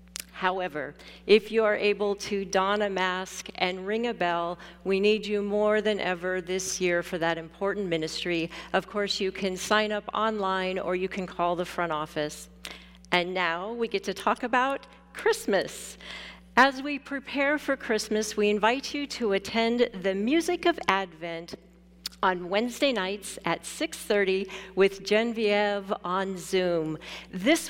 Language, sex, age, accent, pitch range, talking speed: English, female, 50-69, American, 190-235 Hz, 155 wpm